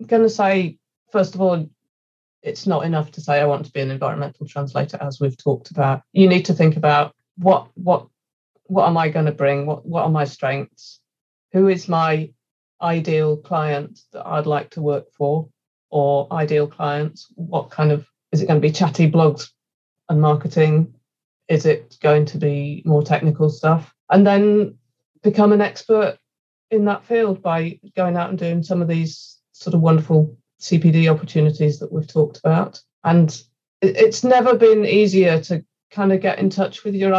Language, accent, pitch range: English, British, 150-180 Hz